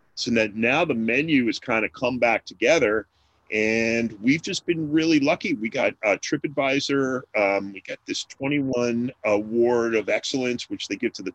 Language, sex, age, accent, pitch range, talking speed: English, male, 40-59, American, 110-150 Hz, 175 wpm